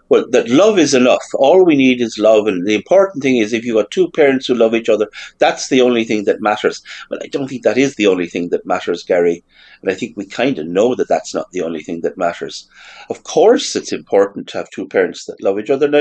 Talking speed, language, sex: 260 wpm, English, male